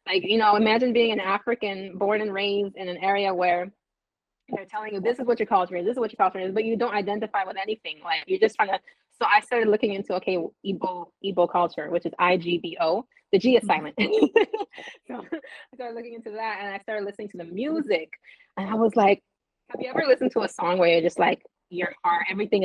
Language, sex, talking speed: English, female, 240 wpm